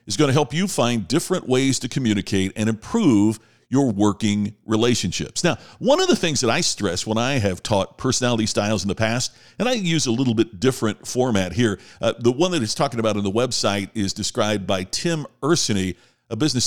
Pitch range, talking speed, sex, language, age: 105-145 Hz, 210 wpm, male, English, 50-69